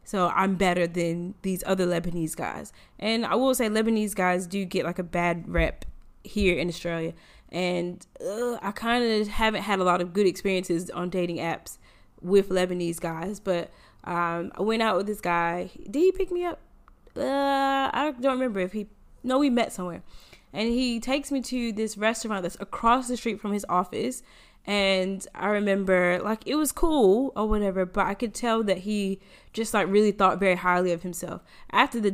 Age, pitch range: 20-39, 180-220 Hz